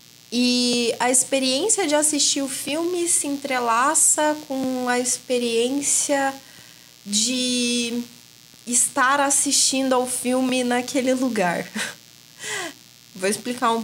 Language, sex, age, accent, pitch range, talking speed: Portuguese, female, 20-39, Brazilian, 205-255 Hz, 95 wpm